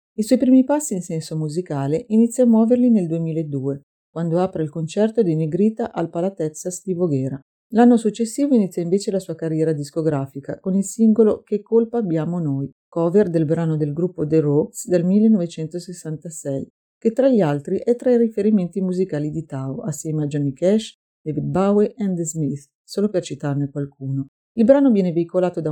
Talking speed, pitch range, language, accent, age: 175 wpm, 155-215 Hz, Italian, native, 50-69